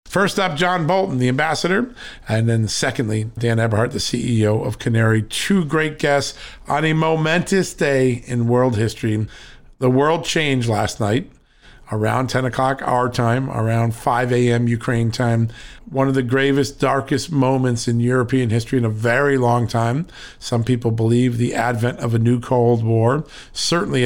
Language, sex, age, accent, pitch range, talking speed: English, male, 50-69, American, 115-140 Hz, 160 wpm